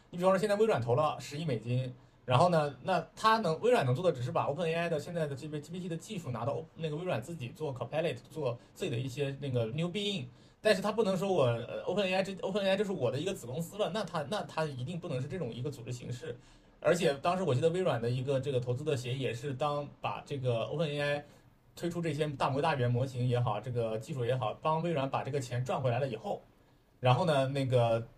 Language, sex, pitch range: Chinese, male, 125-165 Hz